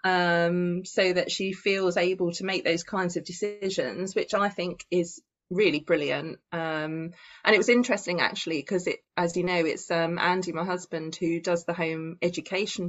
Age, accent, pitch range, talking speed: 20-39, British, 170-205 Hz, 180 wpm